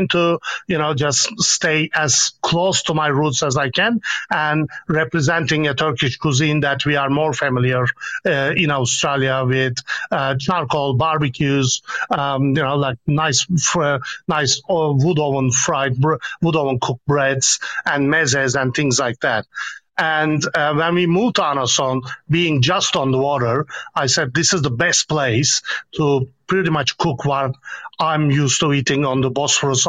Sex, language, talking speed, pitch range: male, English, 160 wpm, 135-160 Hz